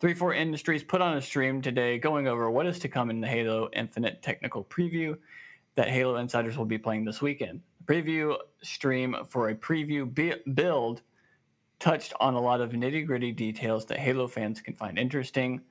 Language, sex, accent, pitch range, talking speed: English, male, American, 115-140 Hz, 185 wpm